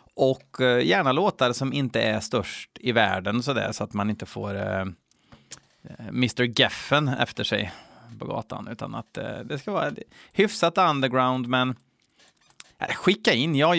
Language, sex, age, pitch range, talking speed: Swedish, male, 30-49, 115-140 Hz, 155 wpm